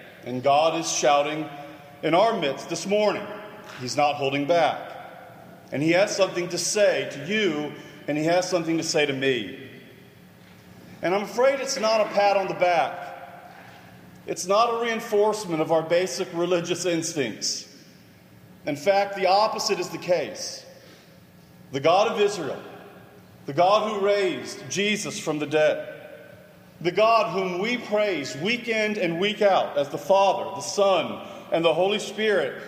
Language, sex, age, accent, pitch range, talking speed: English, male, 40-59, American, 165-210 Hz, 160 wpm